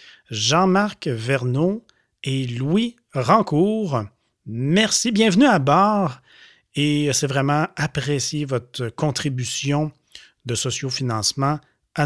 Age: 30-49